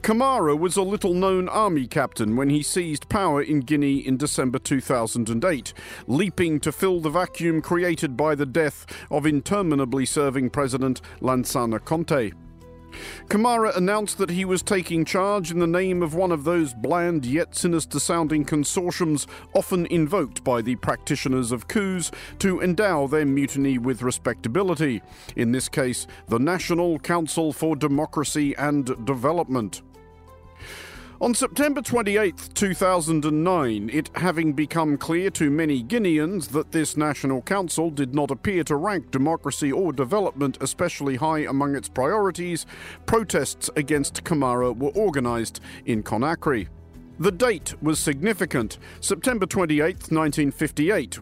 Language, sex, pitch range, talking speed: English, male, 135-175 Hz, 130 wpm